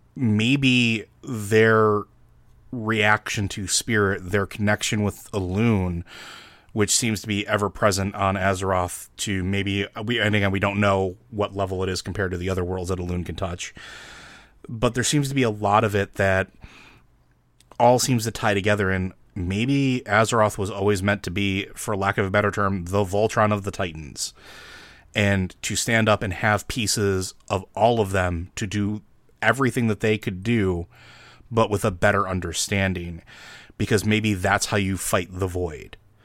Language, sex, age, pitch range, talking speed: English, male, 30-49, 95-115 Hz, 170 wpm